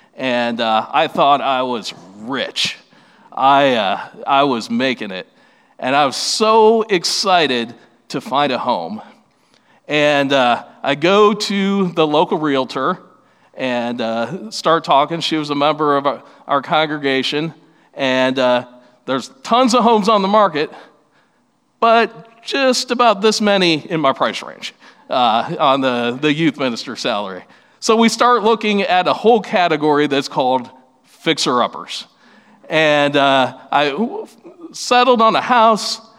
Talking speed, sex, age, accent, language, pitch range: 140 wpm, male, 40-59, American, English, 140-220 Hz